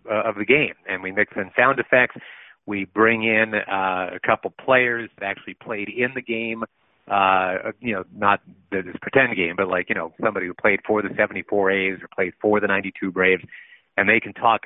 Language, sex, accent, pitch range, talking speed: English, male, American, 100-115 Hz, 205 wpm